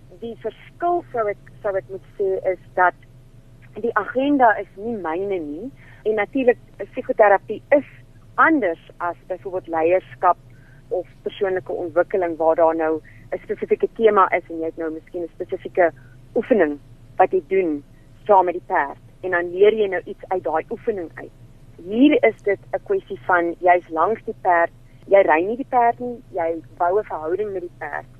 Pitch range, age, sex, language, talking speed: 160-225 Hz, 30-49, female, English, 175 wpm